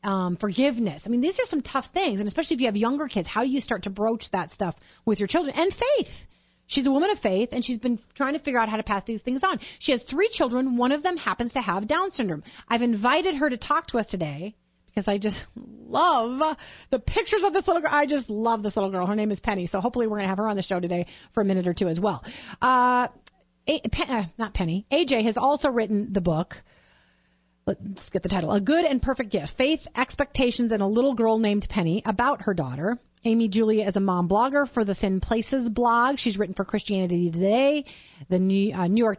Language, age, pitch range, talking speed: English, 30-49, 195-270 Hz, 235 wpm